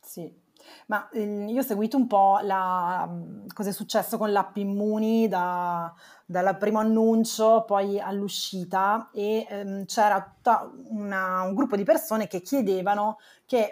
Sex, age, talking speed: female, 20-39, 135 wpm